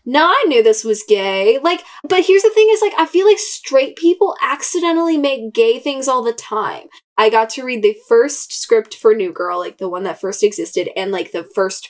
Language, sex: English, female